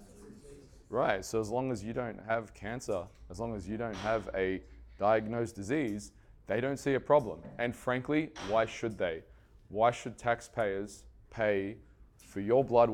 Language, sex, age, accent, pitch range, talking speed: English, male, 20-39, Australian, 95-120 Hz, 160 wpm